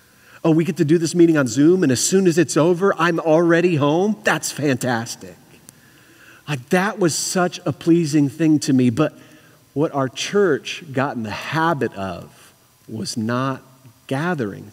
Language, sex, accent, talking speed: English, male, American, 165 wpm